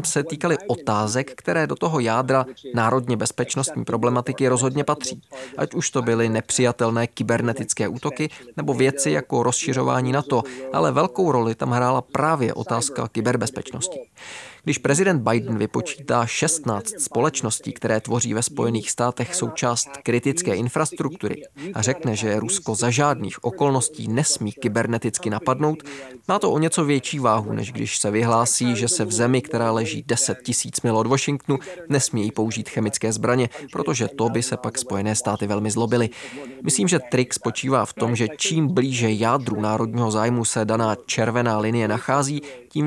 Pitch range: 115-135 Hz